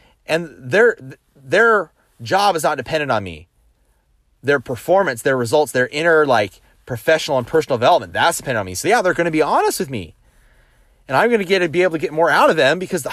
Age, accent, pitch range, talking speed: 30-49, American, 105-160 Hz, 220 wpm